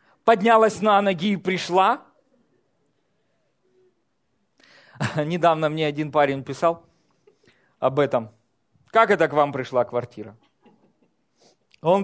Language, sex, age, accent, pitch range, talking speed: Russian, male, 40-59, native, 170-240 Hz, 95 wpm